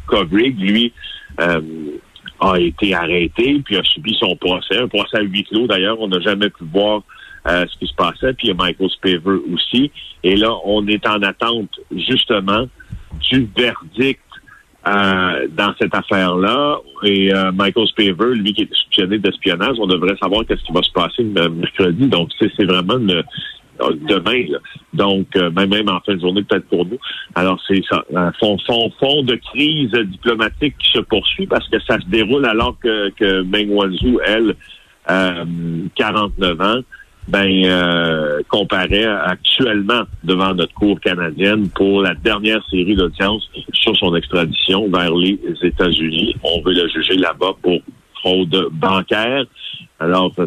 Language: French